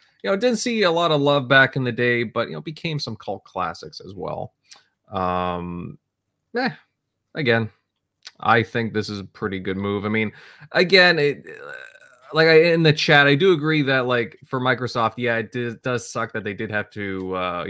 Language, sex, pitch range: English, male, 95-135 Hz